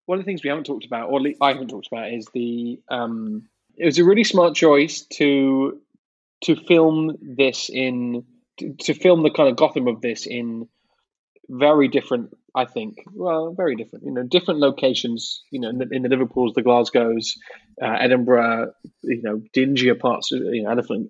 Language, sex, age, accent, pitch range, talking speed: English, male, 20-39, British, 115-145 Hz, 195 wpm